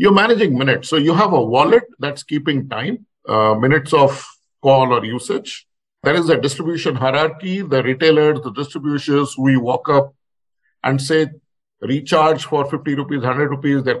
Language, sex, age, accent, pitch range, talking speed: Hindi, male, 50-69, native, 135-160 Hz, 165 wpm